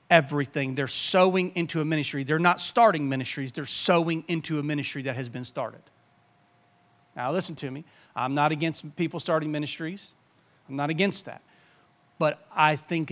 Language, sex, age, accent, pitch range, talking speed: English, male, 40-59, American, 145-190 Hz, 165 wpm